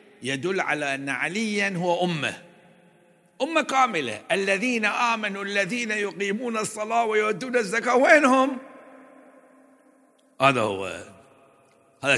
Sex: male